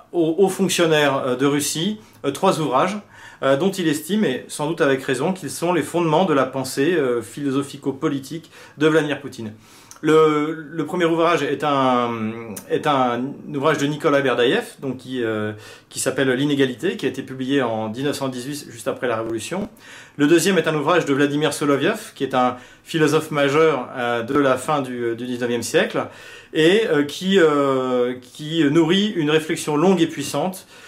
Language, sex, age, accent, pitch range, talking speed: French, male, 40-59, French, 130-165 Hz, 170 wpm